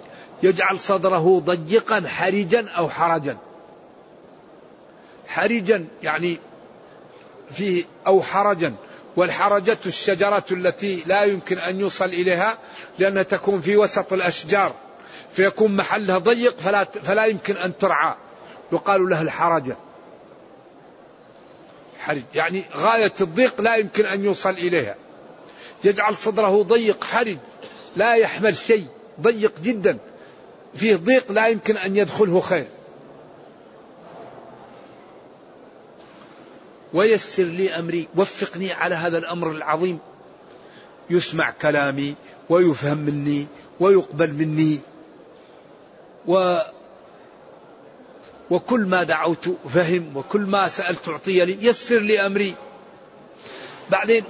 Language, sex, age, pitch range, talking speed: Arabic, male, 50-69, 175-205 Hz, 95 wpm